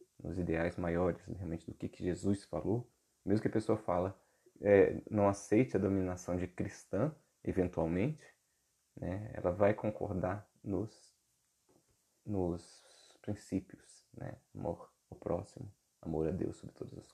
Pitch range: 90-105 Hz